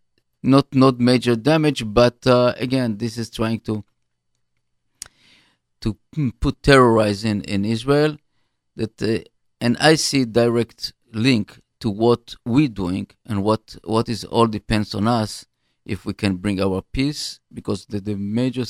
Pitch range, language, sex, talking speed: 100-125 Hz, English, male, 150 wpm